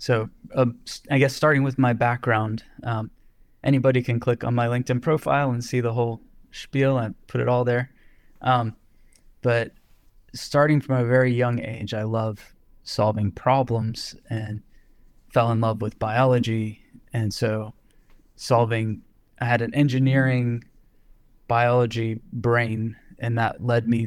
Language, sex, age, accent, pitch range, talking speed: English, male, 20-39, American, 115-125 Hz, 140 wpm